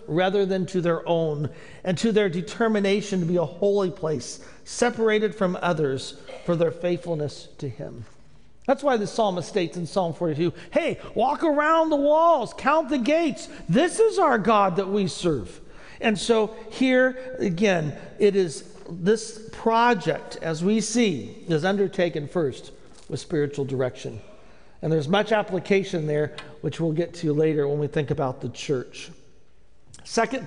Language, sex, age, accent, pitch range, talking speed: English, male, 50-69, American, 170-225 Hz, 155 wpm